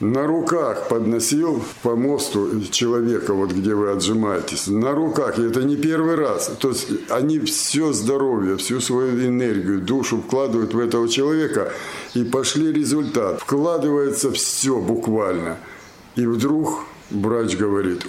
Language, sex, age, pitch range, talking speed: Russian, male, 60-79, 115-145 Hz, 135 wpm